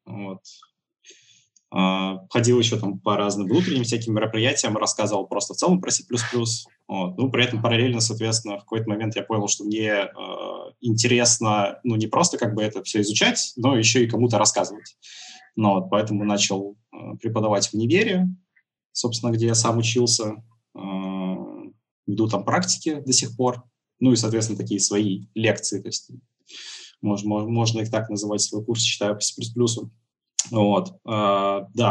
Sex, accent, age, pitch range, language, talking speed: male, native, 20-39, 105-120 Hz, Russian, 160 wpm